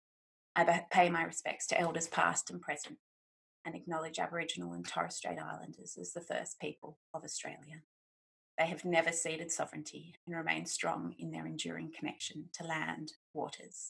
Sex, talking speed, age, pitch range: female, 160 wpm, 30-49, 155-185 Hz